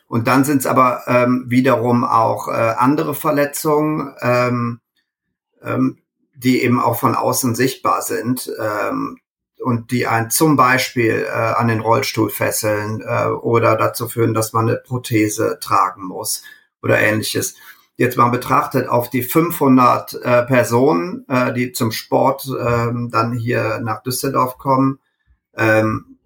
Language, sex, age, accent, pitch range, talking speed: German, male, 40-59, German, 115-135 Hz, 140 wpm